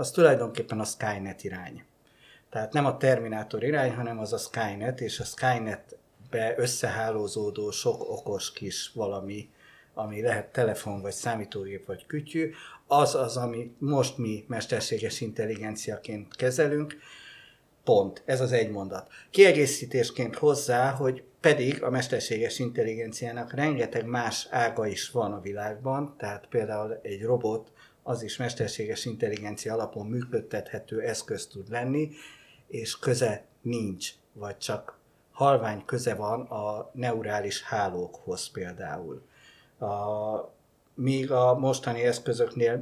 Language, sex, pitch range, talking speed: Hungarian, male, 105-130 Hz, 120 wpm